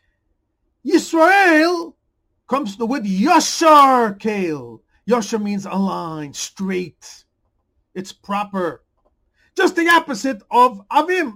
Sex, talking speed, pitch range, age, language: male, 90 wpm, 180-270 Hz, 50-69, English